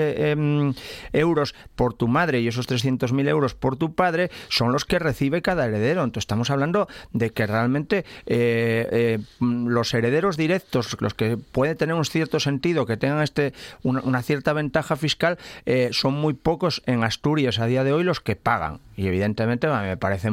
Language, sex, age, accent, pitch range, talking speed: Spanish, male, 40-59, Spanish, 115-145 Hz, 175 wpm